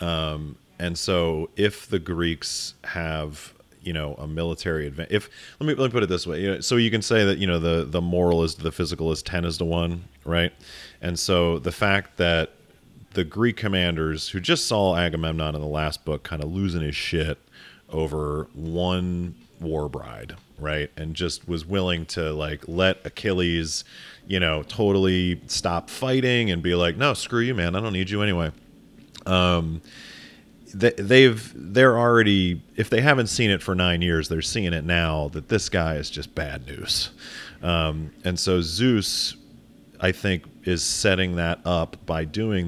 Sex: male